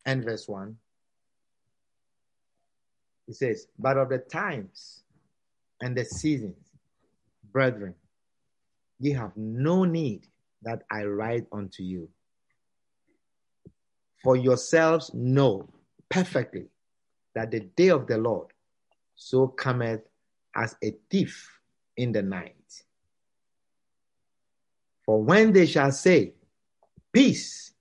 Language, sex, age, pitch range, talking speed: English, male, 50-69, 105-140 Hz, 100 wpm